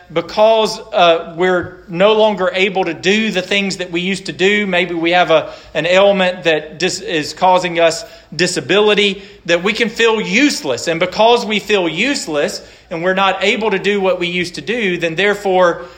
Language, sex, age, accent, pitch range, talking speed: English, male, 40-59, American, 140-190 Hz, 190 wpm